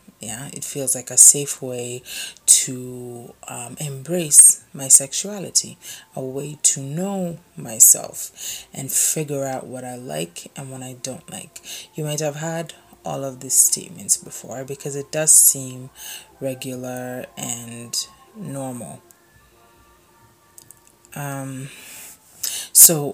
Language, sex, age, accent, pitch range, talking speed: English, female, 30-49, Nigerian, 125-145 Hz, 120 wpm